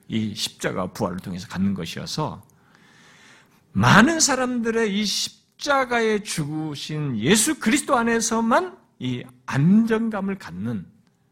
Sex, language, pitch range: male, Korean, 145-230 Hz